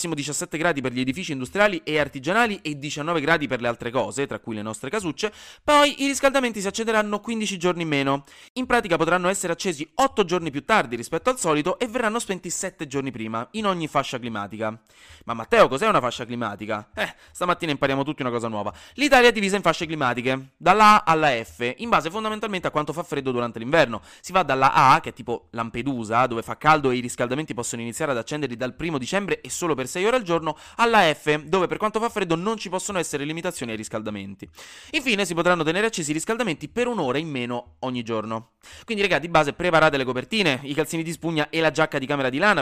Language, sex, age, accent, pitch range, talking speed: Italian, male, 20-39, native, 125-185 Hz, 220 wpm